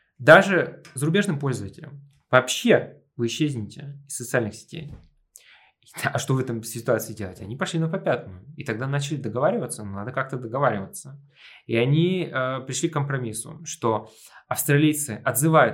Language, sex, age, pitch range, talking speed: Russian, male, 20-39, 115-145 Hz, 135 wpm